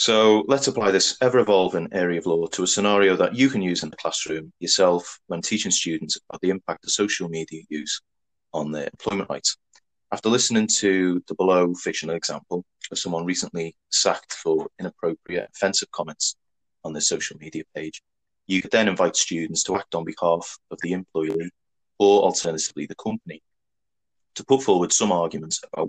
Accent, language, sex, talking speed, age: British, English, male, 175 wpm, 30-49